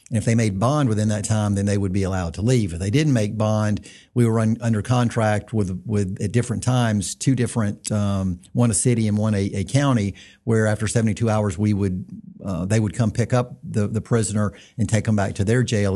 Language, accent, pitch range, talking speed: English, American, 105-120 Hz, 235 wpm